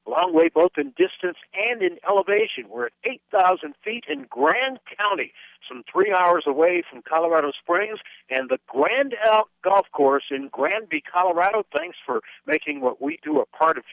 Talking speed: 170 wpm